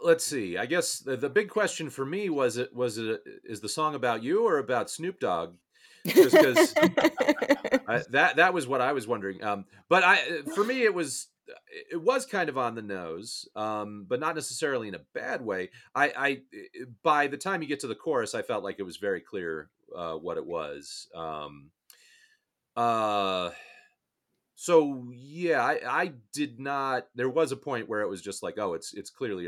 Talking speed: 195 wpm